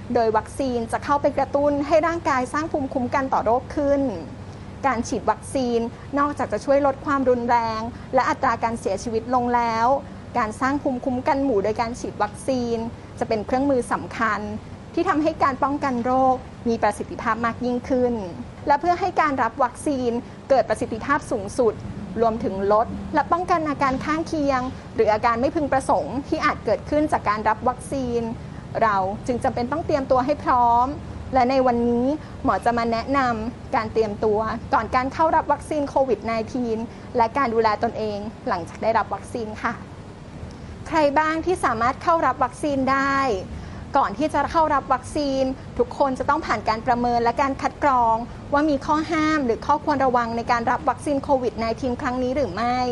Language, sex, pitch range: Thai, female, 235-285 Hz